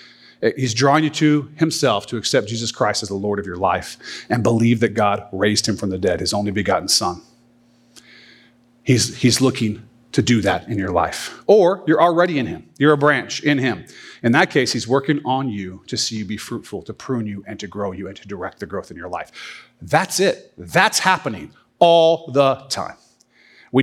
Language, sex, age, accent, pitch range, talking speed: English, male, 40-59, American, 120-150 Hz, 205 wpm